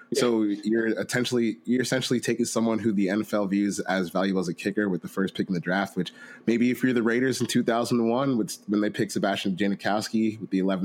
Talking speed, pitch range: 215 wpm, 95-110 Hz